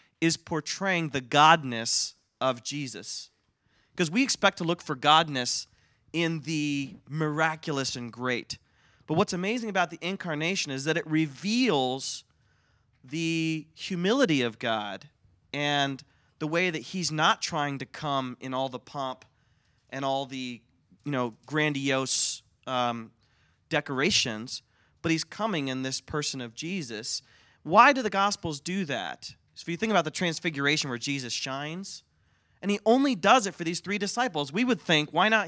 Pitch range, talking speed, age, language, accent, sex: 130-180 Hz, 150 wpm, 30-49, English, American, male